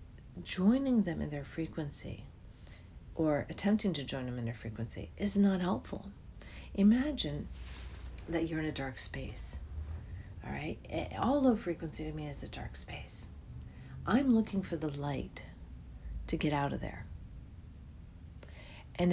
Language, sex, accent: English, female, American